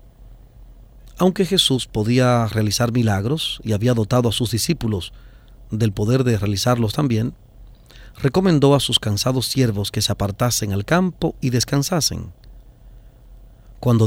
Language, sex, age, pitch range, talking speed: English, male, 40-59, 110-130 Hz, 125 wpm